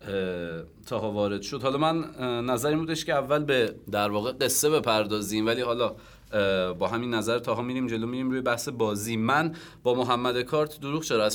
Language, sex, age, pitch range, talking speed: Persian, male, 30-49, 100-130 Hz, 180 wpm